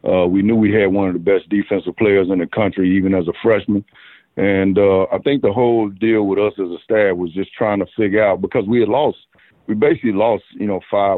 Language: English